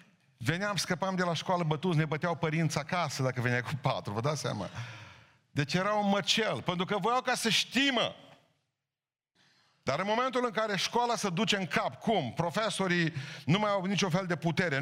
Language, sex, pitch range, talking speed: Romanian, male, 155-220 Hz, 185 wpm